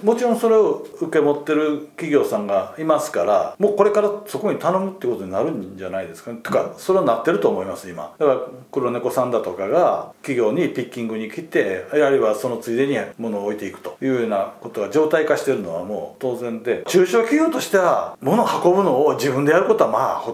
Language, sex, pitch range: Japanese, male, 130-215 Hz